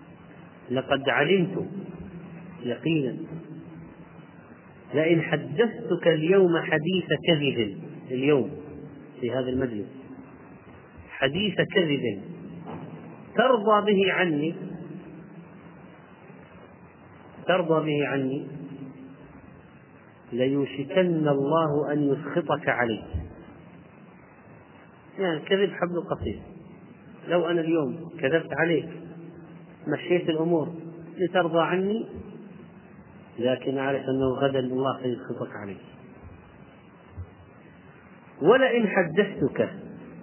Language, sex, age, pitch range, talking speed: Arabic, male, 40-59, 140-185 Hz, 70 wpm